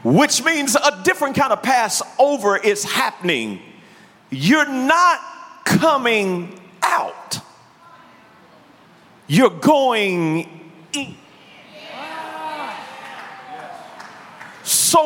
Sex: male